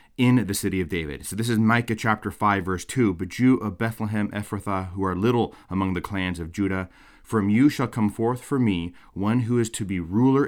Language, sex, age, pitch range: English, male, 30-49, 95-125 Hz